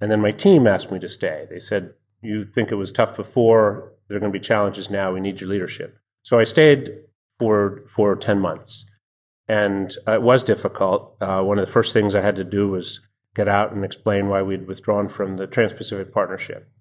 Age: 30-49